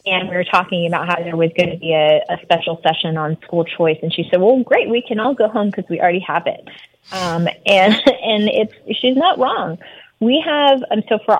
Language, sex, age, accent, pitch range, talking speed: English, female, 20-39, American, 180-215 Hz, 235 wpm